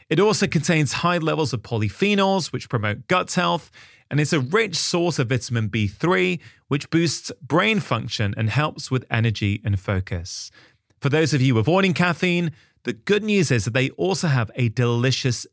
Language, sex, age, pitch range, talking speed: English, male, 30-49, 115-180 Hz, 175 wpm